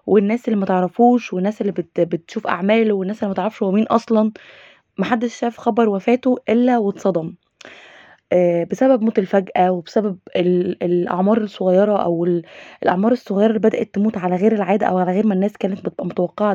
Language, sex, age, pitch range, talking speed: Arabic, female, 20-39, 185-235 Hz, 145 wpm